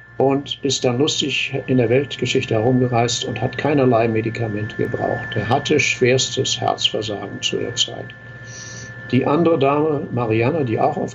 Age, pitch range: 60-79, 115-135 Hz